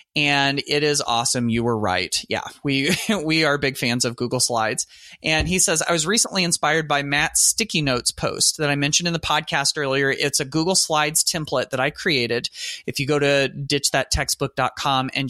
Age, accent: 30-49, American